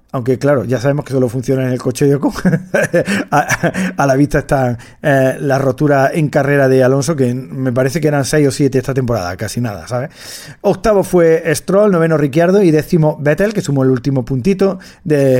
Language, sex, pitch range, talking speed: Spanish, male, 125-165 Hz, 200 wpm